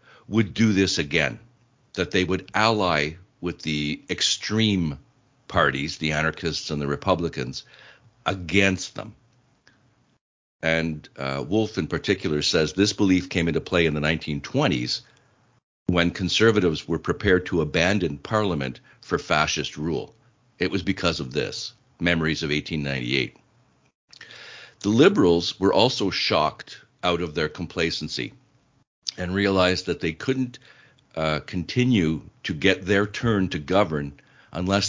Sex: male